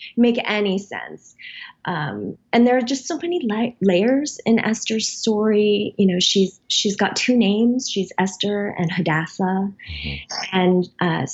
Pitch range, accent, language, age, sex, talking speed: 170-205 Hz, American, English, 20-39, female, 150 wpm